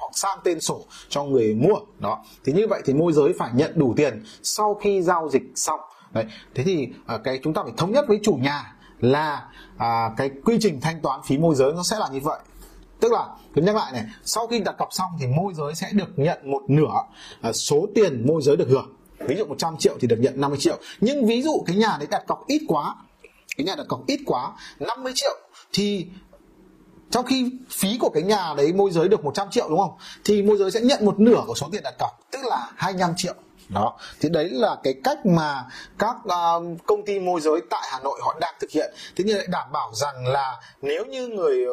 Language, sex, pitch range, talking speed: Vietnamese, male, 155-225 Hz, 235 wpm